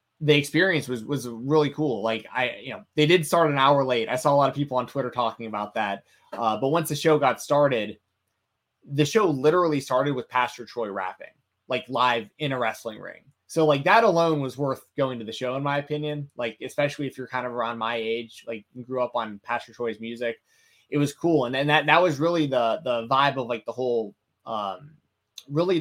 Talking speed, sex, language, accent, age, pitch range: 225 wpm, male, English, American, 20-39, 120-150 Hz